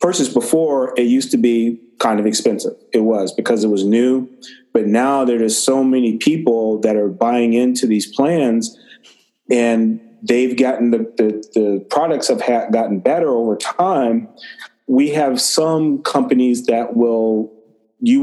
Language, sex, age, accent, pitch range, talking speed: English, male, 30-49, American, 110-130 Hz, 150 wpm